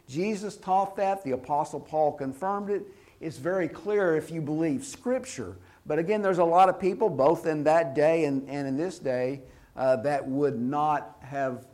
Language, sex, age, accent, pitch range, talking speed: English, male, 50-69, American, 145-200 Hz, 185 wpm